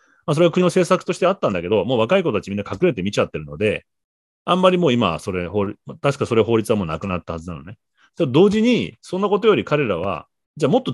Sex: male